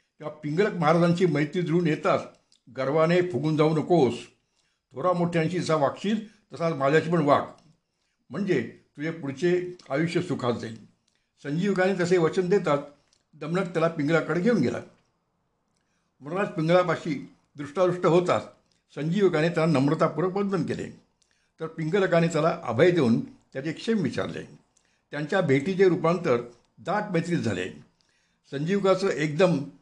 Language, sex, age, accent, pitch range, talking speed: Marathi, male, 60-79, native, 140-180 Hz, 105 wpm